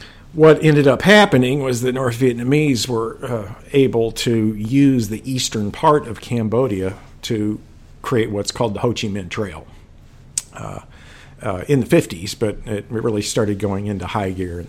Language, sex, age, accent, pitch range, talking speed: English, male, 50-69, American, 100-125 Hz, 170 wpm